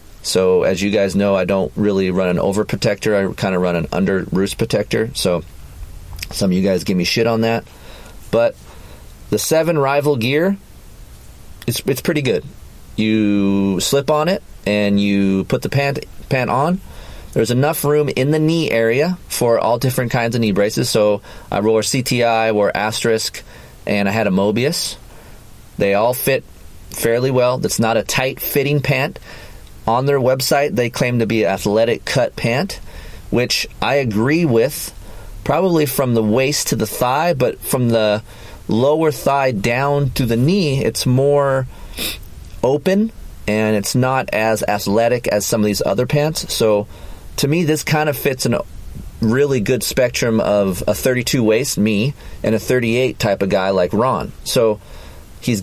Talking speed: 170 wpm